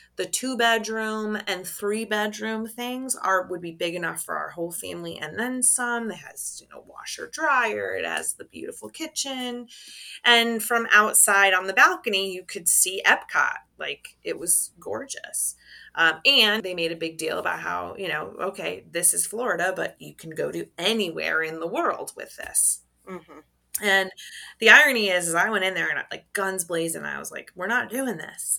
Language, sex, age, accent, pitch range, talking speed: English, female, 30-49, American, 180-240 Hz, 185 wpm